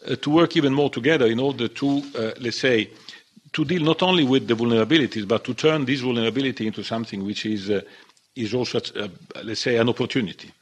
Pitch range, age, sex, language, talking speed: 115-155 Hz, 50-69, male, English, 200 wpm